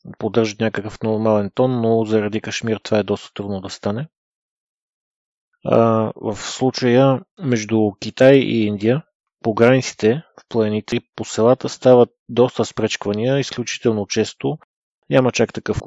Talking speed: 130 wpm